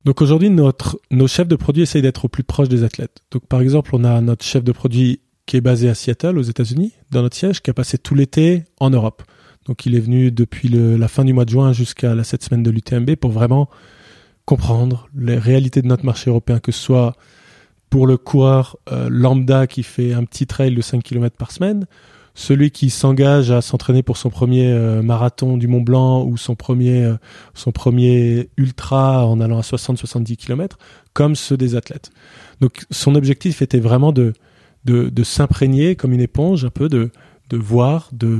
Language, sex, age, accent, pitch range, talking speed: French, male, 20-39, French, 120-140 Hz, 210 wpm